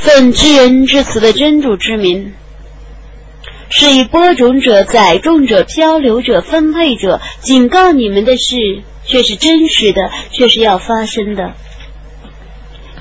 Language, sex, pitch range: Chinese, female, 215-275 Hz